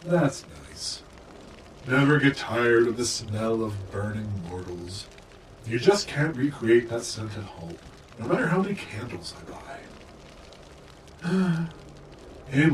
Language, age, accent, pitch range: English, 40-59, American, 105-165 Hz